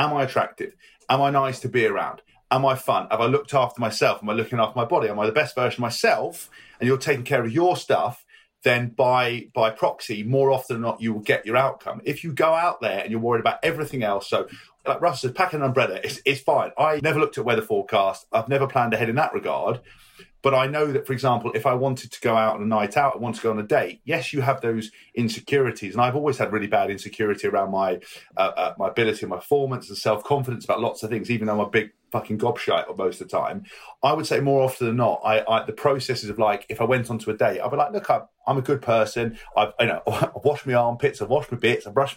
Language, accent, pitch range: English, British, 115-140 Hz